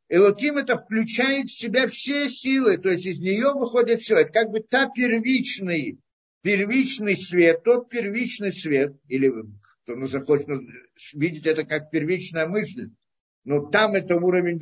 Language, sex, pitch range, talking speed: Russian, male, 175-255 Hz, 145 wpm